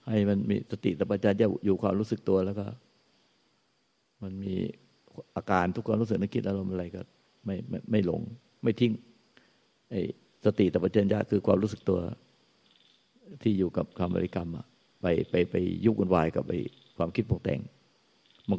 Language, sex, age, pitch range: Thai, male, 60-79, 95-110 Hz